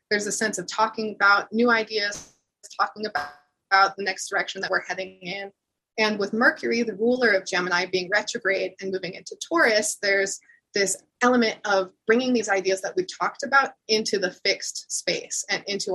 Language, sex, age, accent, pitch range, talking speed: English, female, 20-39, American, 195-245 Hz, 180 wpm